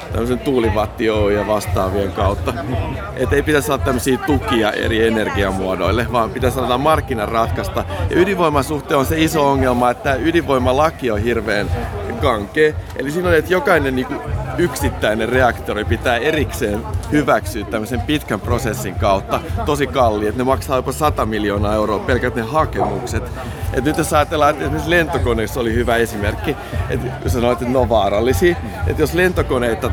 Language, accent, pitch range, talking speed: Finnish, native, 105-130 Hz, 150 wpm